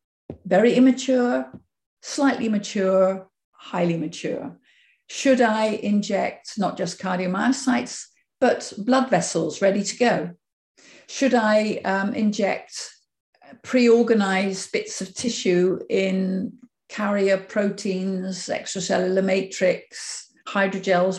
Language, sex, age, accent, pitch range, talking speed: English, female, 50-69, British, 195-245 Hz, 90 wpm